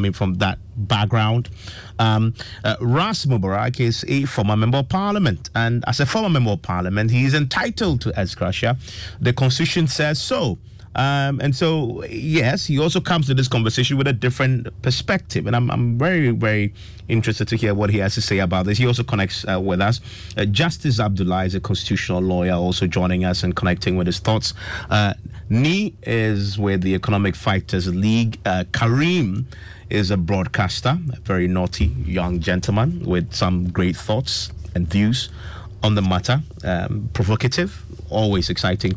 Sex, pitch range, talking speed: male, 95-120 Hz, 175 wpm